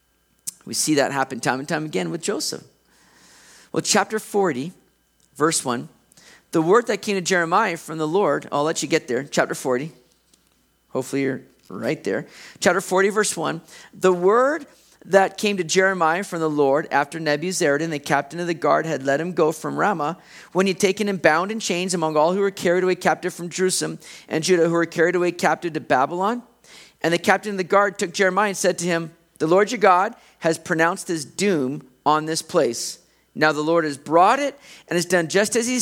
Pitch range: 155-200 Hz